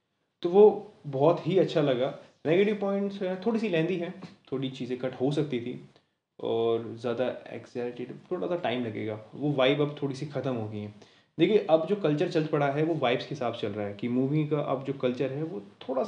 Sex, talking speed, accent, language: male, 220 wpm, native, Hindi